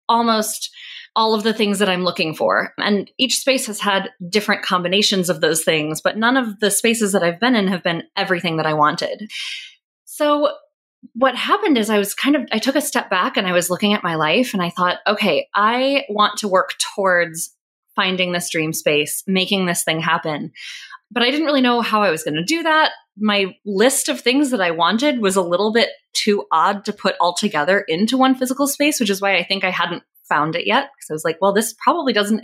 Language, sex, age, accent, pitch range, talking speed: English, female, 20-39, American, 185-250 Hz, 225 wpm